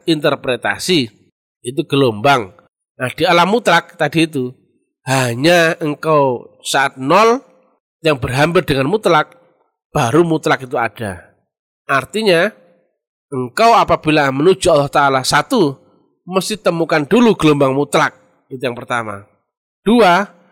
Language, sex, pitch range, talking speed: Indonesian, male, 135-175 Hz, 110 wpm